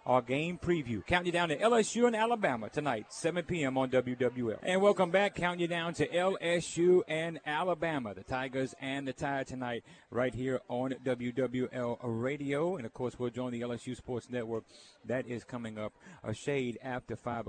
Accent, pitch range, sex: American, 125-165 Hz, male